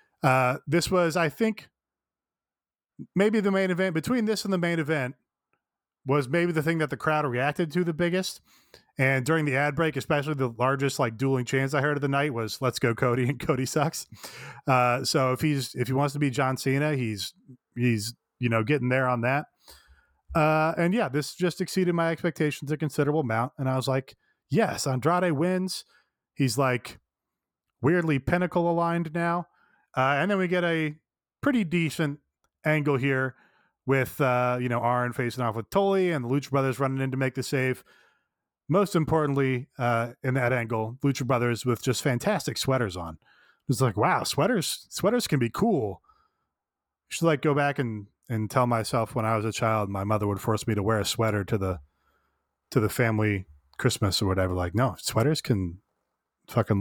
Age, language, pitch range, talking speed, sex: 30-49, English, 120-165 Hz, 190 wpm, male